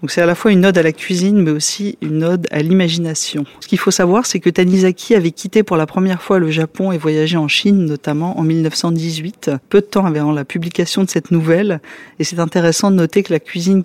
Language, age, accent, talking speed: French, 40-59, French, 235 wpm